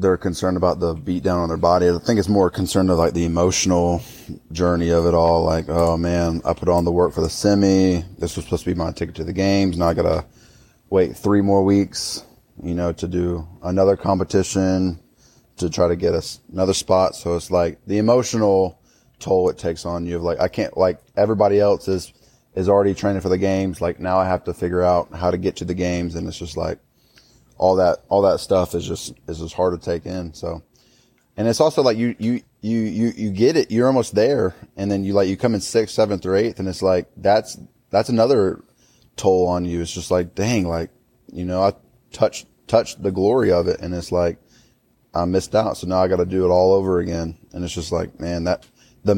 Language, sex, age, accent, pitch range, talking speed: English, male, 20-39, American, 85-100 Hz, 230 wpm